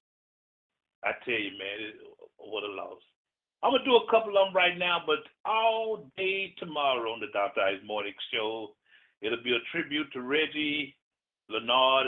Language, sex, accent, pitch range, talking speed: English, male, American, 115-175 Hz, 170 wpm